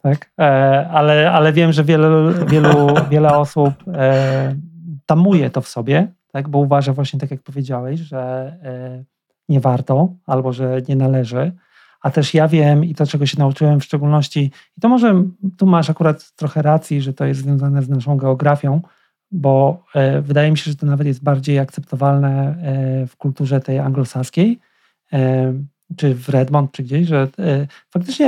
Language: Polish